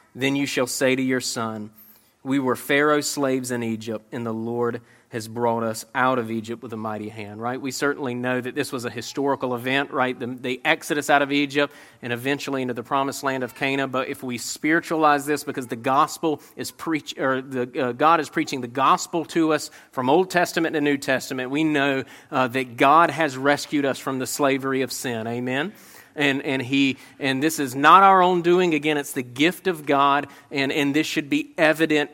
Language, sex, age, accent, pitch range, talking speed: English, male, 40-59, American, 125-150 Hz, 210 wpm